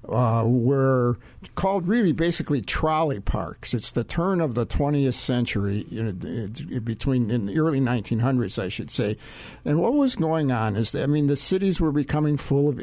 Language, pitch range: English, 115-150 Hz